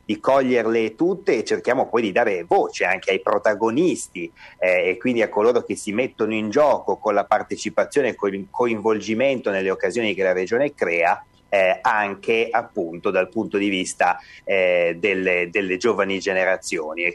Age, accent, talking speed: 30-49, native, 165 wpm